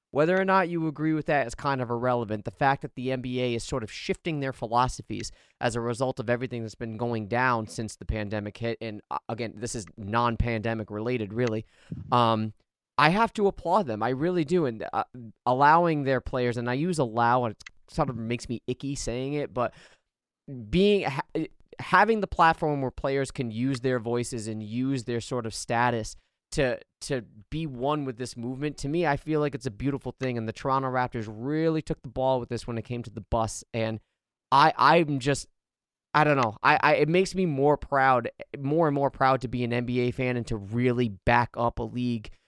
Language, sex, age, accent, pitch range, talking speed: English, male, 20-39, American, 120-150 Hz, 210 wpm